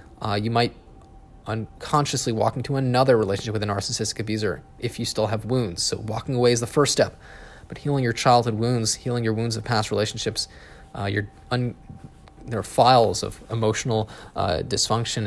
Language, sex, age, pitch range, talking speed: English, male, 20-39, 105-125 Hz, 170 wpm